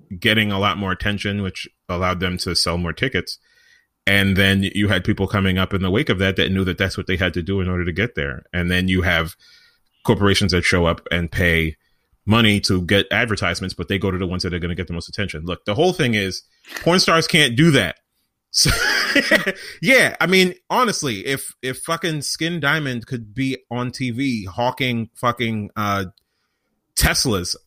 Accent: American